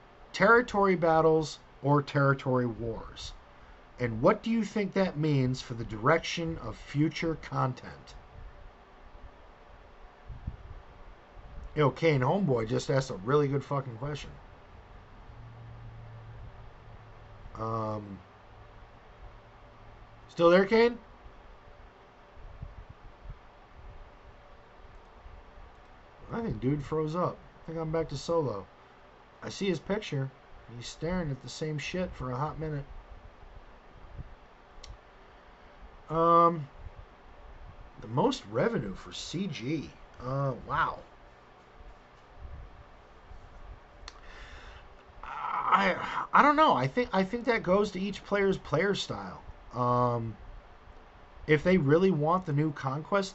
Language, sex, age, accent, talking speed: English, male, 50-69, American, 100 wpm